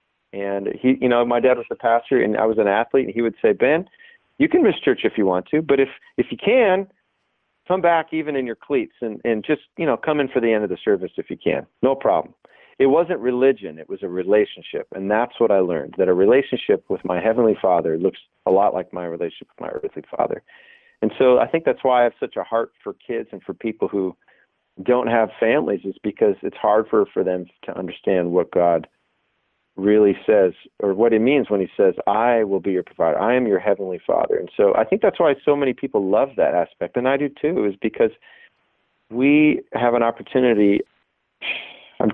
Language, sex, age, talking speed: English, male, 40-59, 225 wpm